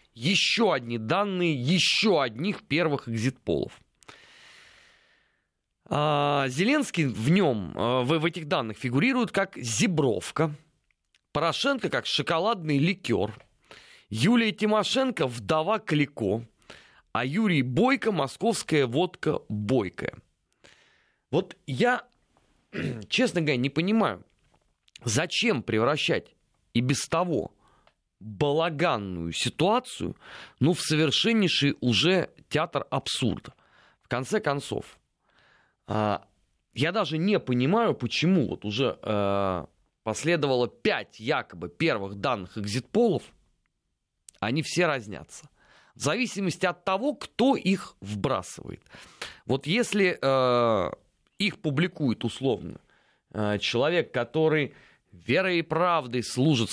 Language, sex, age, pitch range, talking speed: Russian, male, 30-49, 120-185 Hz, 90 wpm